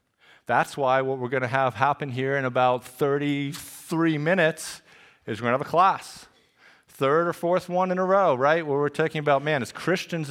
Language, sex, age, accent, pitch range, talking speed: English, male, 40-59, American, 125-165 Hz, 205 wpm